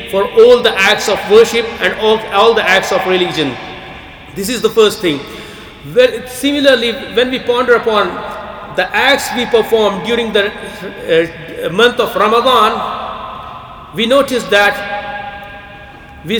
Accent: Indian